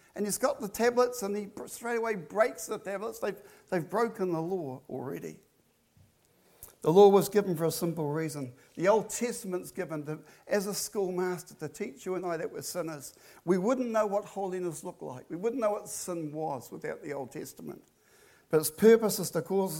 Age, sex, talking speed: 60-79, male, 195 wpm